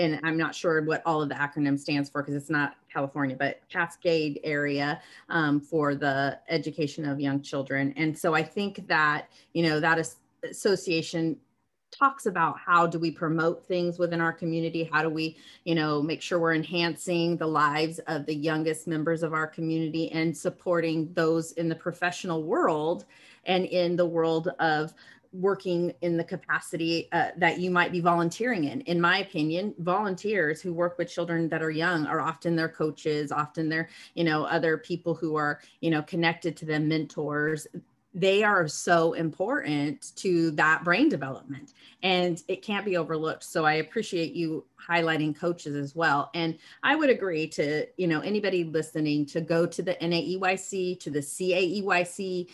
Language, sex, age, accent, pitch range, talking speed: English, female, 30-49, American, 155-180 Hz, 175 wpm